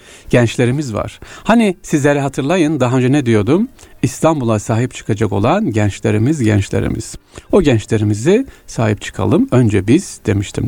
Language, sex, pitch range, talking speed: Turkish, male, 110-165 Hz, 125 wpm